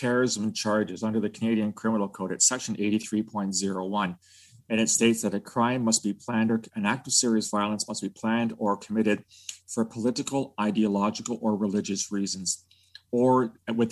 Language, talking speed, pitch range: English, 165 wpm, 100-120 Hz